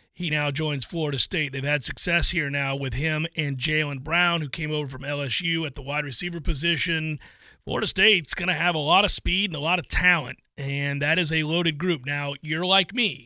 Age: 30-49